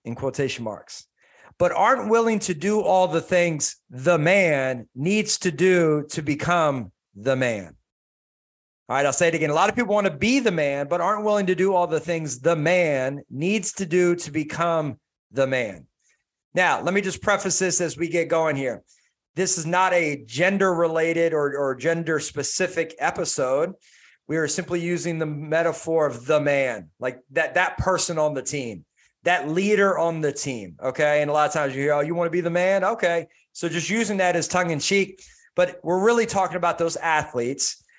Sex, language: male, English